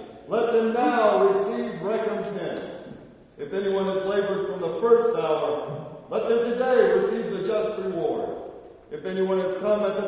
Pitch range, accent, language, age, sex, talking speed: 185-235 Hz, American, English, 40-59, male, 155 wpm